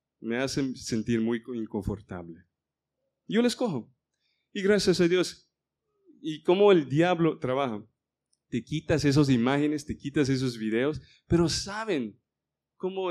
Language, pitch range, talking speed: Spanish, 110-140 Hz, 130 wpm